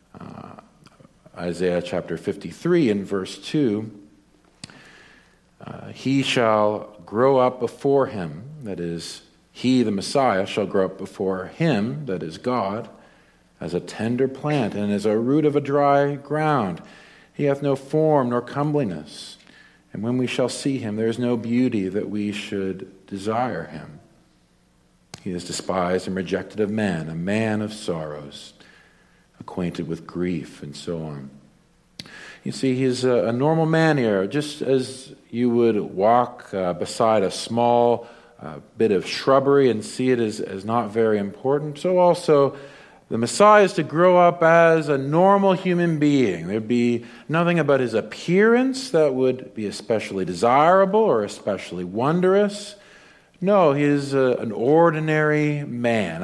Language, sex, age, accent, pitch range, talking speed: English, male, 50-69, American, 100-150 Hz, 150 wpm